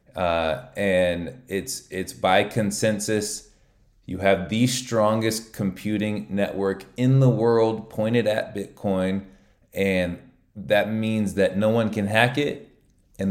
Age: 20-39